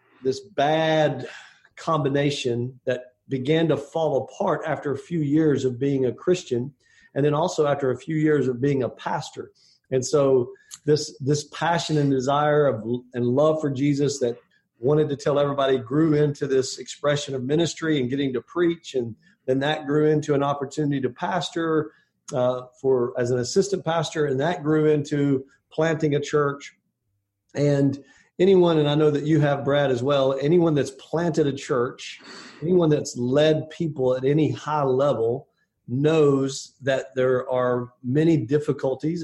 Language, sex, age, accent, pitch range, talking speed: English, male, 50-69, American, 130-155 Hz, 160 wpm